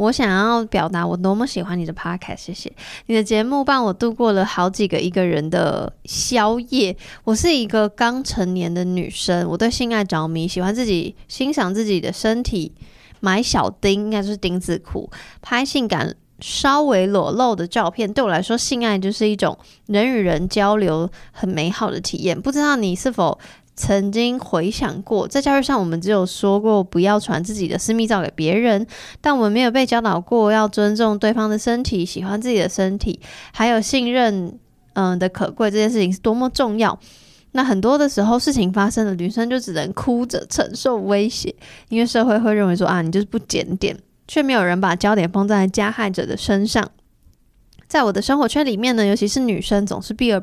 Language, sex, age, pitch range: Chinese, female, 20-39, 185-235 Hz